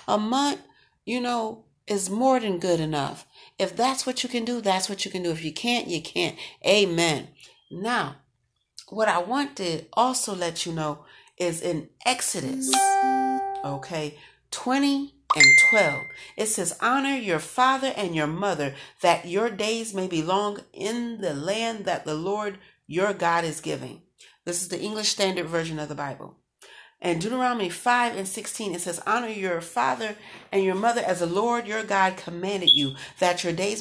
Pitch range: 165-220 Hz